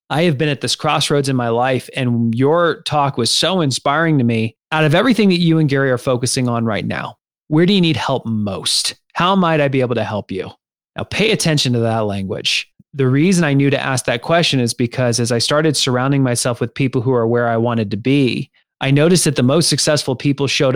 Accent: American